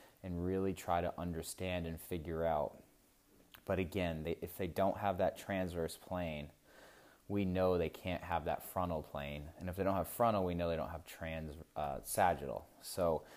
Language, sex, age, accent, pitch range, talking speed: English, male, 20-39, American, 85-95 Hz, 180 wpm